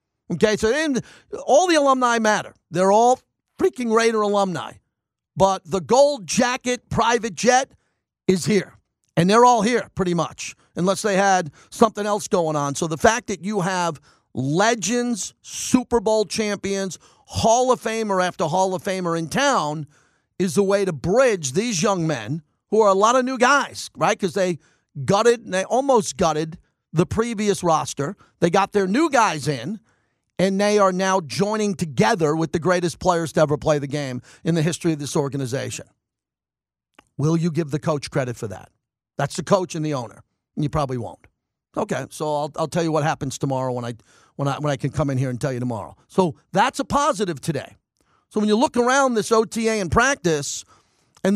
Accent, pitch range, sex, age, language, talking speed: American, 150-215 Hz, male, 40-59, English, 185 wpm